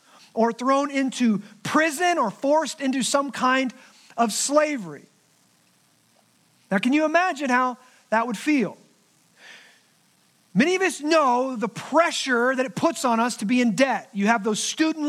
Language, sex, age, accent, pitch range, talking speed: English, male, 40-59, American, 235-300 Hz, 150 wpm